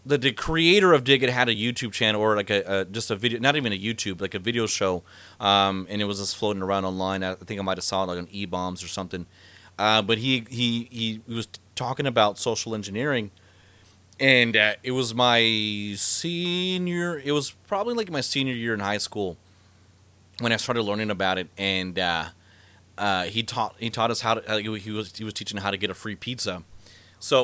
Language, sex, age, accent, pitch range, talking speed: English, male, 30-49, American, 95-125 Hz, 215 wpm